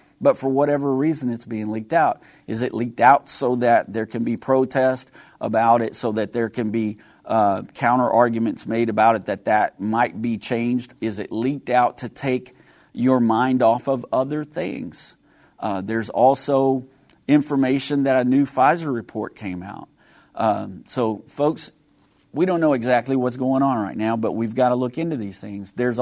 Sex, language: male, English